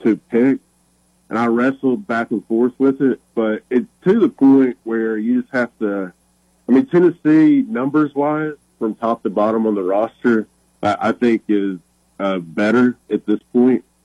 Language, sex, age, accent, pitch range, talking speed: English, male, 30-49, American, 100-120 Hz, 170 wpm